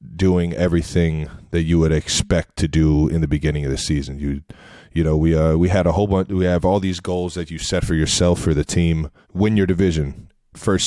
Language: English